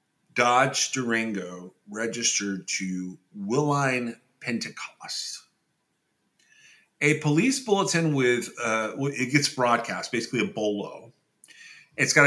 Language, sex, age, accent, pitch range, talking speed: English, male, 40-59, American, 115-160 Hz, 95 wpm